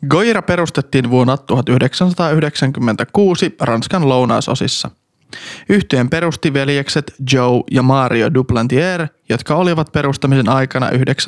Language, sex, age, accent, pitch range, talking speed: Finnish, male, 20-39, native, 130-160 Hz, 90 wpm